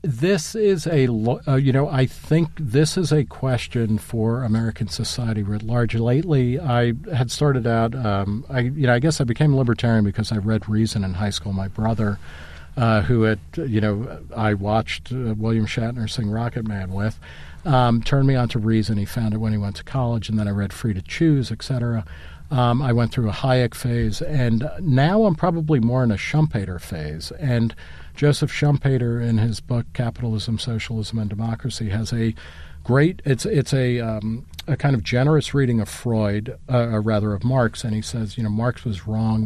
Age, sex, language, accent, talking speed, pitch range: 50-69, male, English, American, 195 wpm, 105-125 Hz